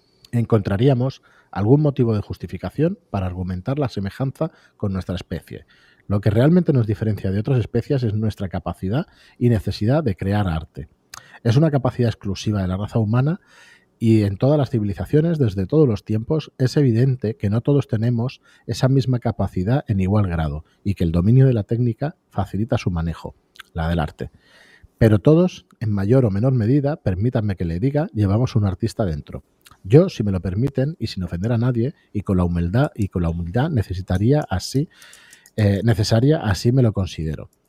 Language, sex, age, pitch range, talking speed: Spanish, male, 40-59, 95-130 Hz, 175 wpm